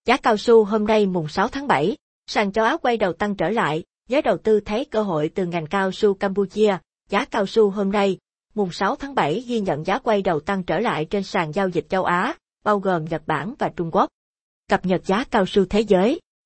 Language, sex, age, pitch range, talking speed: Vietnamese, female, 20-39, 185-220 Hz, 235 wpm